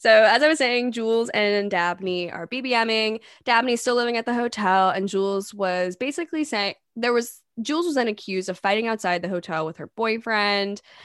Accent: American